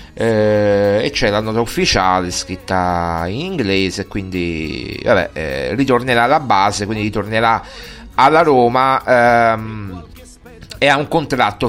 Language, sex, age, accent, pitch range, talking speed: Italian, male, 30-49, native, 105-140 Hz, 125 wpm